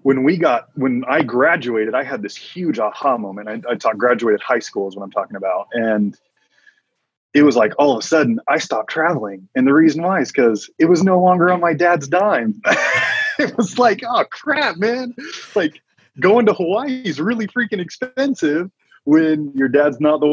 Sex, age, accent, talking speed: male, 30-49, American, 195 wpm